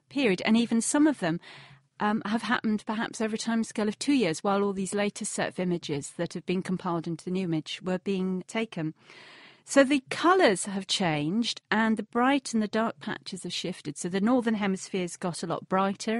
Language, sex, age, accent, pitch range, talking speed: English, female, 40-59, British, 185-230 Hz, 210 wpm